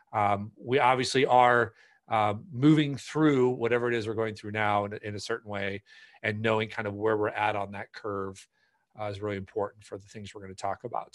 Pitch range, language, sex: 100-120 Hz, English, male